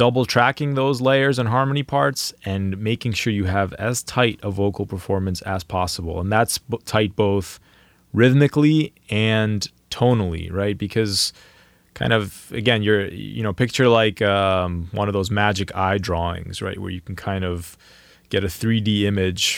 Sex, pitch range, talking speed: male, 95-115 Hz, 160 wpm